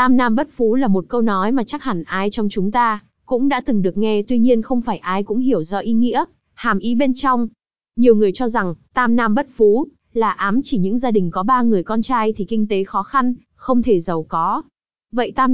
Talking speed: 245 wpm